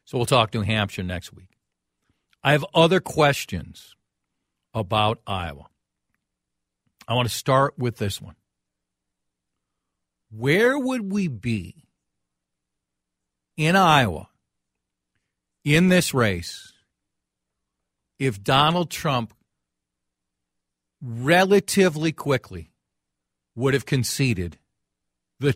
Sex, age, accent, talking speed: male, 50-69, American, 90 wpm